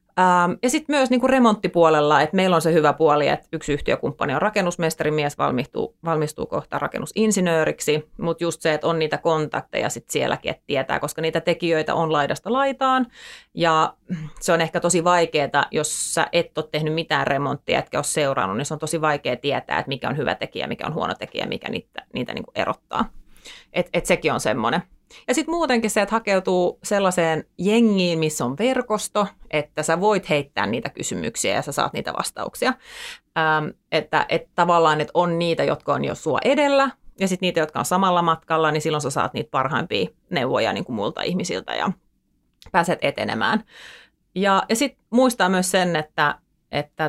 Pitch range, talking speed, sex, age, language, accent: 155-195 Hz, 180 wpm, female, 30-49, Finnish, native